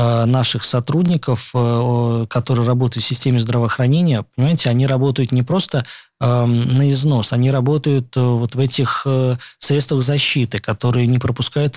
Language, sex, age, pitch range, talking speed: Russian, male, 20-39, 125-145 Hz, 120 wpm